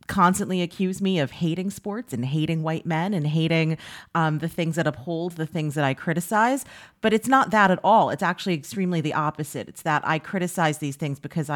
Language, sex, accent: English, female, American